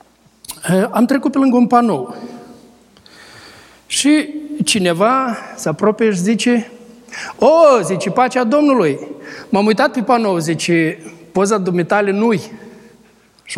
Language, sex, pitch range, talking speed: Romanian, male, 165-230 Hz, 115 wpm